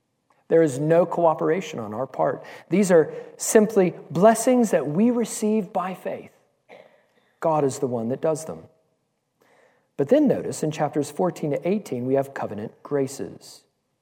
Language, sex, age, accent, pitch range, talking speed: English, male, 40-59, American, 145-185 Hz, 150 wpm